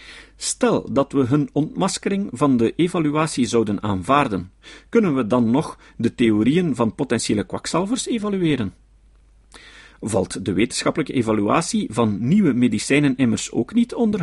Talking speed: 130 wpm